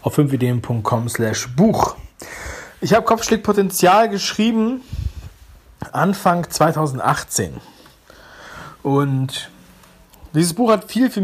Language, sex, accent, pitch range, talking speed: German, male, German, 130-180 Hz, 80 wpm